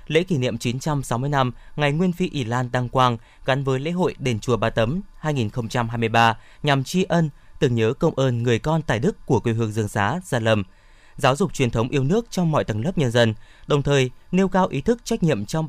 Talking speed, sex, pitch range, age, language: 230 wpm, male, 115-165 Hz, 20-39, Vietnamese